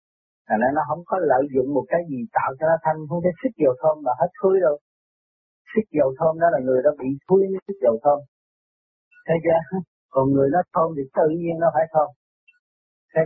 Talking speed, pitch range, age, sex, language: 215 wpm, 140-195 Hz, 30-49, male, Vietnamese